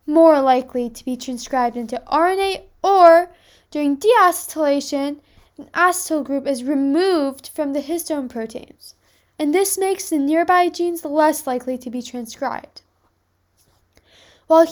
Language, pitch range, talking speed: English, 255-330 Hz, 125 wpm